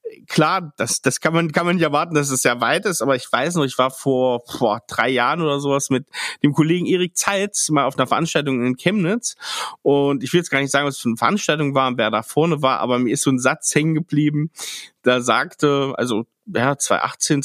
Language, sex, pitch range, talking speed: German, male, 130-155 Hz, 235 wpm